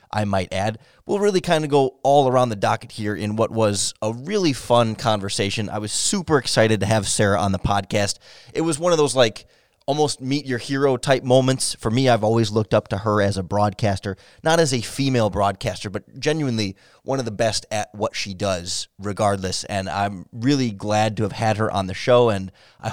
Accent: American